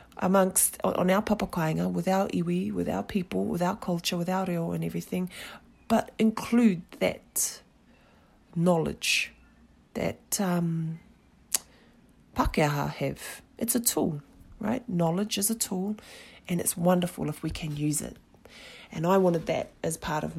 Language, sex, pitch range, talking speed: English, female, 150-190 Hz, 145 wpm